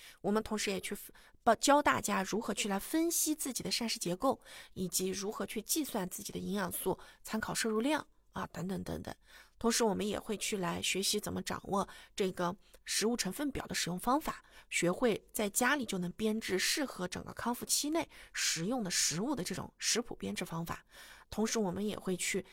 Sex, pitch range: female, 180-235 Hz